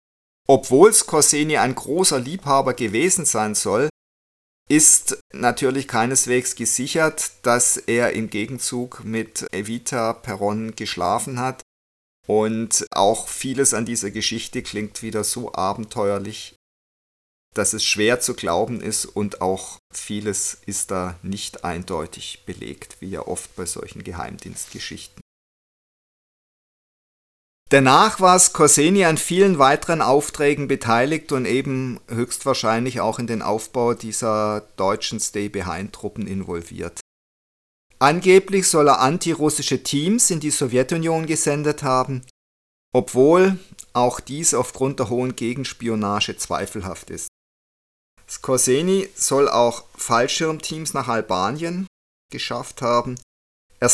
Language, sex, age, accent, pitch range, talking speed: German, male, 50-69, German, 105-145 Hz, 110 wpm